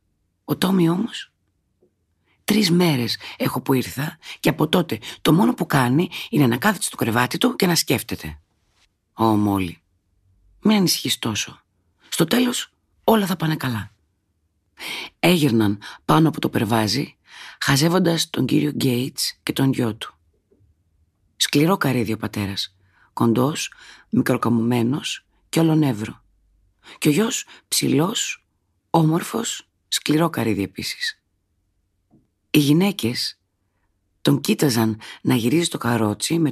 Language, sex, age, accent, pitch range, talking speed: Greek, female, 40-59, native, 100-155 Hz, 120 wpm